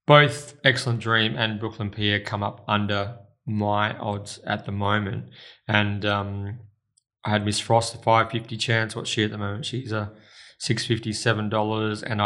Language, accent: English, Australian